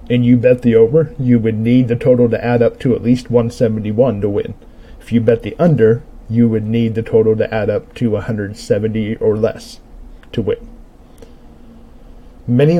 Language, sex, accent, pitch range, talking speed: English, male, American, 110-130 Hz, 185 wpm